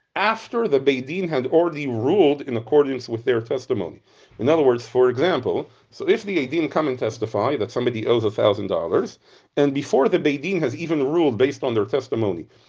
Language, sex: English, male